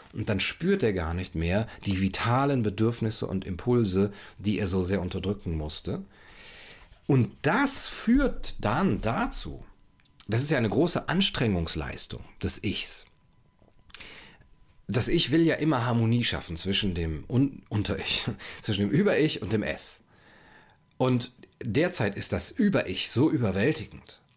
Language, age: German, 40-59